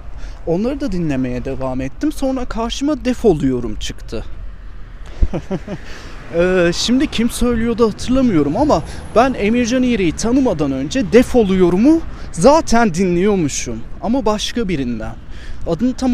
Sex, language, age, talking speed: male, Turkish, 30-49, 110 wpm